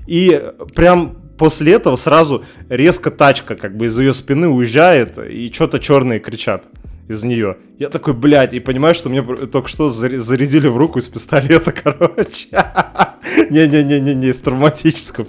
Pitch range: 120-160 Hz